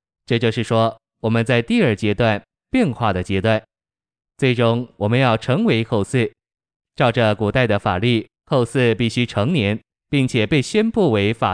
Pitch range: 100-125 Hz